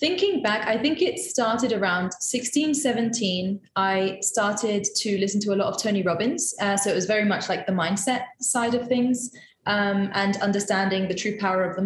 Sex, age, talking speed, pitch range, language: female, 20-39, 190 wpm, 195-245 Hz, English